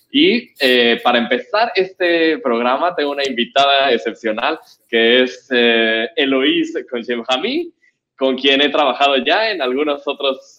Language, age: Spanish, 20-39